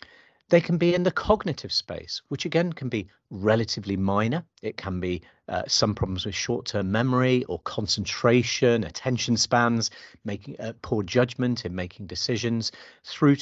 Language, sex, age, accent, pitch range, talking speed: English, male, 40-59, British, 100-140 Hz, 150 wpm